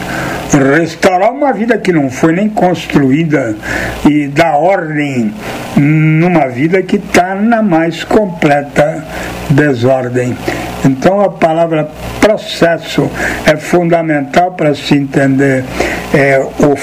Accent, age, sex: Brazilian, 60-79, male